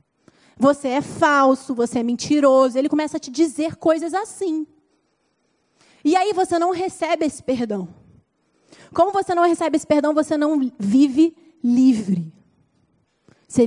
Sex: female